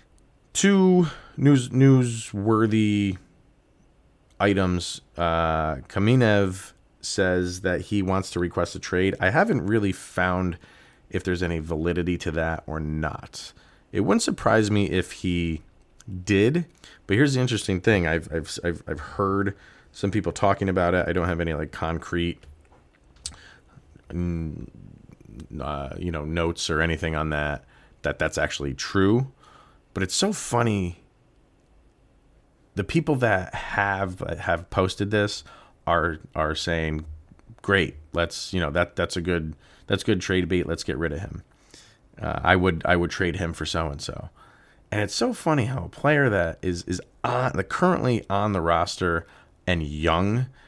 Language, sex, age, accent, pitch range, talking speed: English, male, 30-49, American, 80-105 Hz, 150 wpm